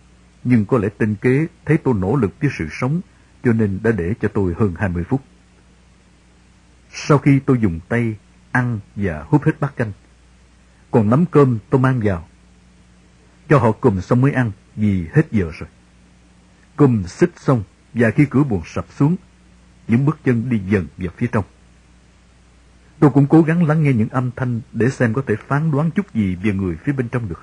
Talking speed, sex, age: 195 wpm, male, 60-79